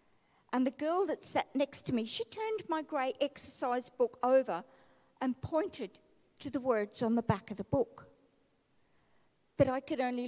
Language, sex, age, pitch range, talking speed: English, female, 50-69, 220-280 Hz, 175 wpm